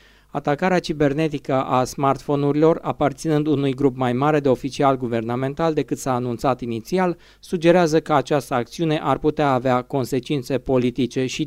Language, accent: Romanian, native